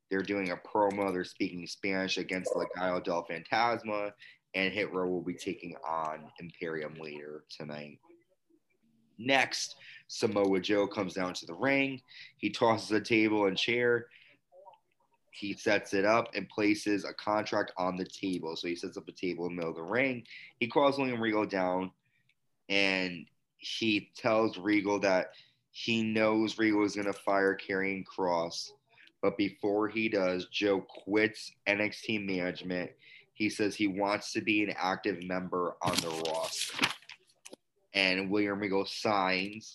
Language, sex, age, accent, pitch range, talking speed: English, male, 20-39, American, 90-105 Hz, 150 wpm